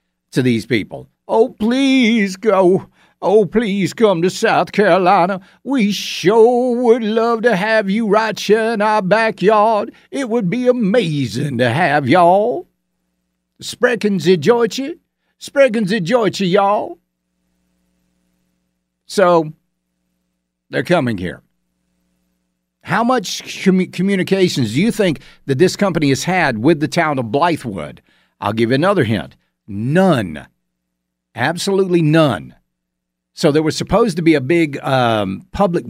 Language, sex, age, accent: English, male, 60-79, American